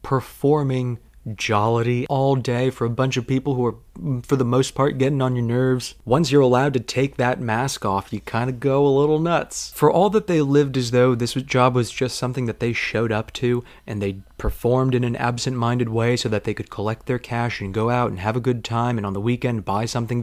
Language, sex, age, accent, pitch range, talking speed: English, male, 30-49, American, 115-140 Hz, 235 wpm